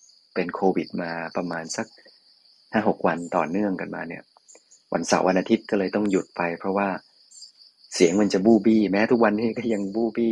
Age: 20-39